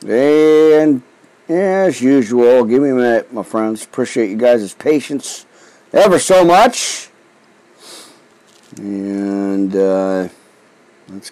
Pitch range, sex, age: 105-150 Hz, male, 50-69